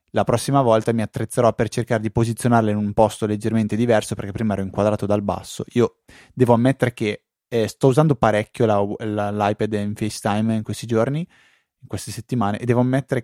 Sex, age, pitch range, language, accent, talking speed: male, 20-39, 105-130 Hz, Italian, native, 180 wpm